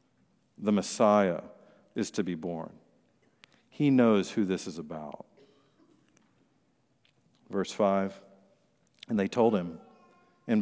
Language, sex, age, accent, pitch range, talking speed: English, male, 50-69, American, 110-140 Hz, 105 wpm